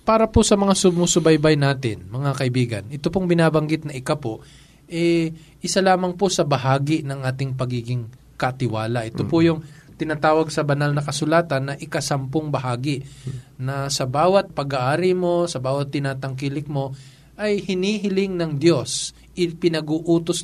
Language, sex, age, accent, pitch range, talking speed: Filipino, male, 20-39, native, 135-175 Hz, 145 wpm